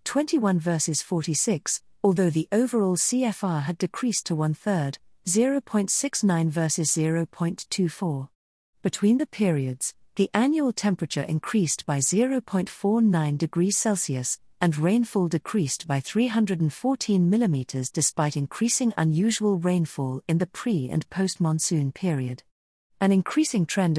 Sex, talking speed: female, 110 wpm